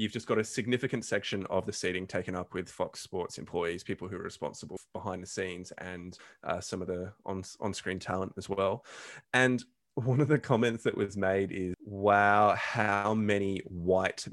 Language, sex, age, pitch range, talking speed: English, male, 20-39, 100-130 Hz, 195 wpm